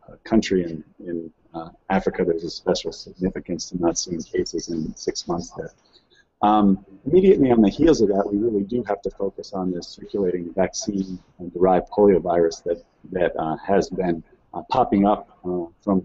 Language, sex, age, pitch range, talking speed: English, male, 40-59, 90-105 Hz, 170 wpm